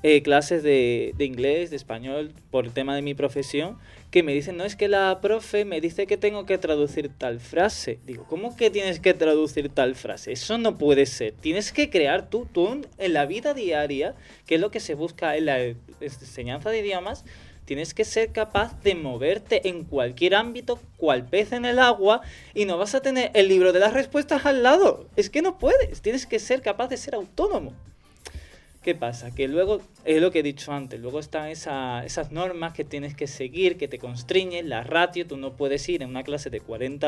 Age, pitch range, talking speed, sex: 20-39, 140-200 Hz, 210 wpm, male